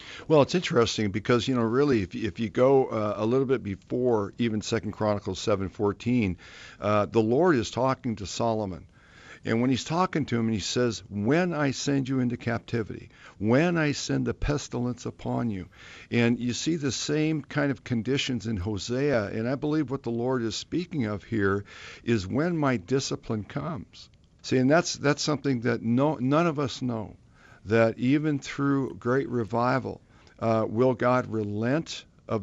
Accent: American